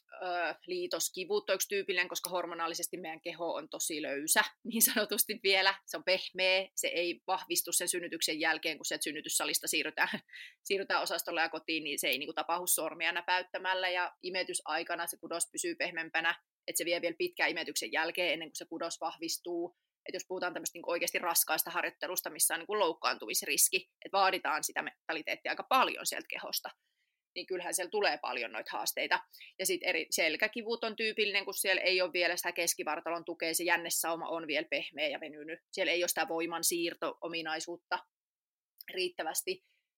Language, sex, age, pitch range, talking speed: Finnish, female, 30-49, 170-205 Hz, 170 wpm